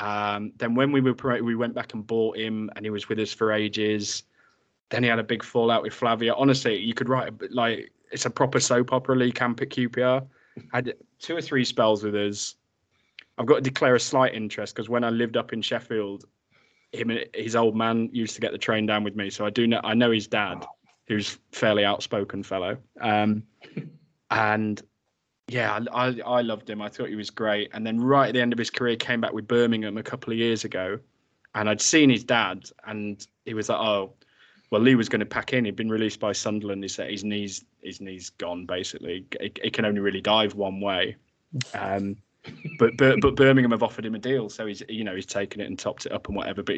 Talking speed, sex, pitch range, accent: 230 wpm, male, 105-120 Hz, British